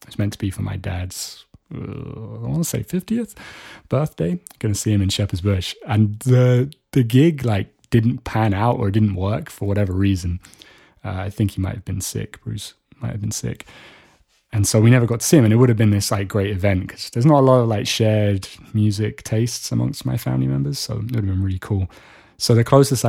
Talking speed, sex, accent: 230 wpm, male, British